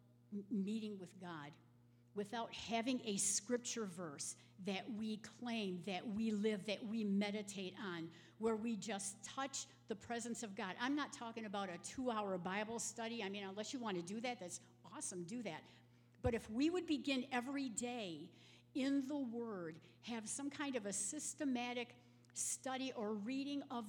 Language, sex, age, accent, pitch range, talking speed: English, female, 50-69, American, 195-245 Hz, 165 wpm